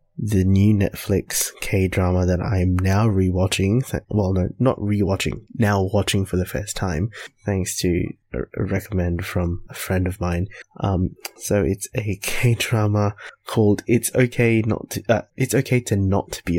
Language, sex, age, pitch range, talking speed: English, male, 20-39, 95-115 Hz, 165 wpm